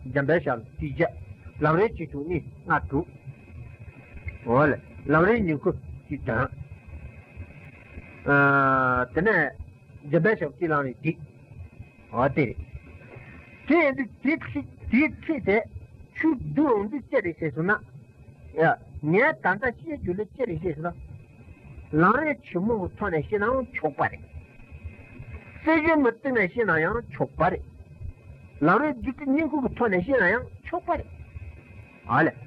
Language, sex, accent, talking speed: Italian, male, Indian, 105 wpm